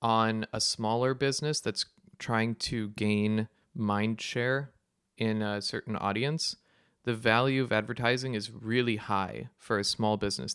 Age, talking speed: 20-39, 140 wpm